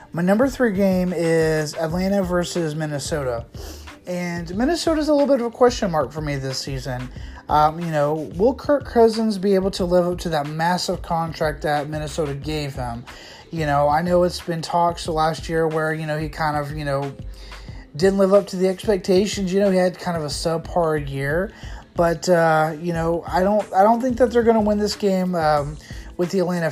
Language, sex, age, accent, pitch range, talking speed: English, male, 30-49, American, 150-195 Hz, 210 wpm